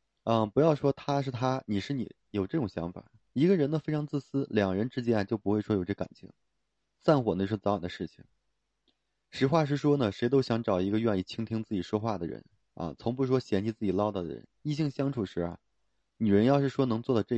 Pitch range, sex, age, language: 95-130 Hz, male, 20-39, Chinese